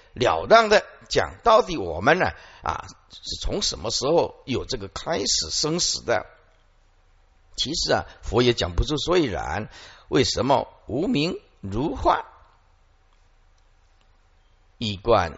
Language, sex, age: Chinese, male, 50-69